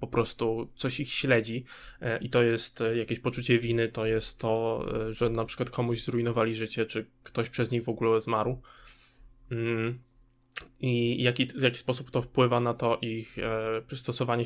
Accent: native